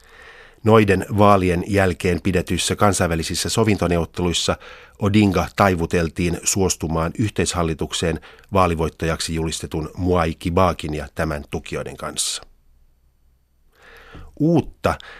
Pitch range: 80-100 Hz